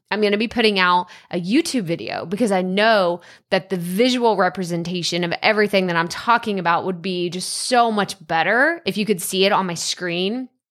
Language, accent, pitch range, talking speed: English, American, 190-240 Hz, 195 wpm